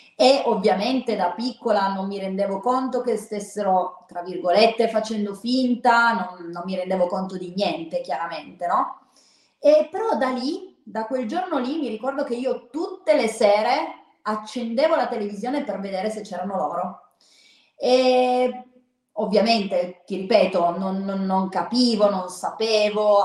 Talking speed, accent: 145 wpm, native